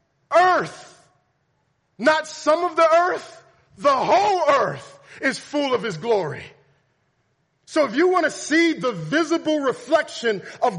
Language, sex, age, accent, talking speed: English, male, 40-59, American, 135 wpm